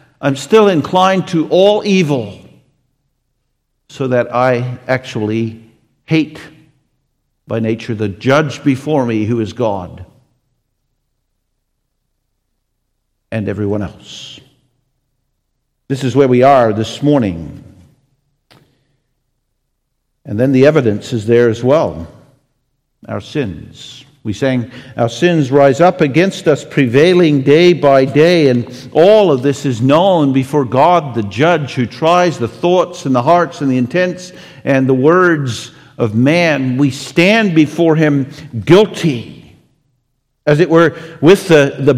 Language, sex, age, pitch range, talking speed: English, male, 50-69, 120-150 Hz, 125 wpm